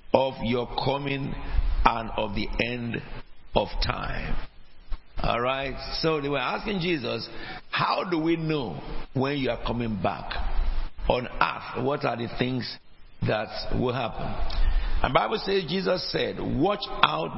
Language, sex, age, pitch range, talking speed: English, male, 60-79, 120-160 Hz, 140 wpm